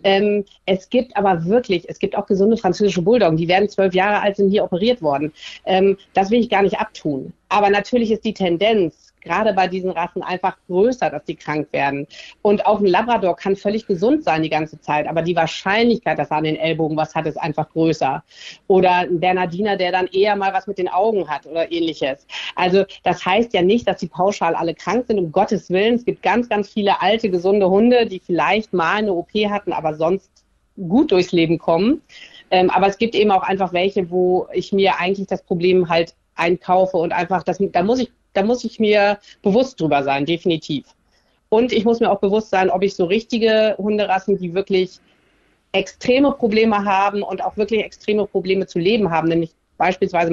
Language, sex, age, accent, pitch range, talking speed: German, female, 40-59, German, 170-205 Hz, 205 wpm